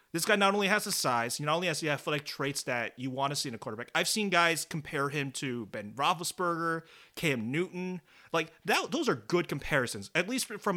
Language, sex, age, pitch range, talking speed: English, male, 30-49, 140-195 Hz, 230 wpm